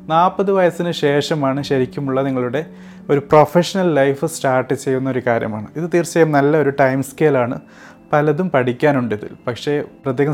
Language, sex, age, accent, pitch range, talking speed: Malayalam, male, 30-49, native, 130-150 Hz, 130 wpm